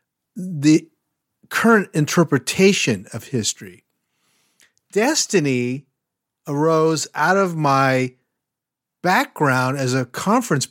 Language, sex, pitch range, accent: English, male, 130-175 Hz, American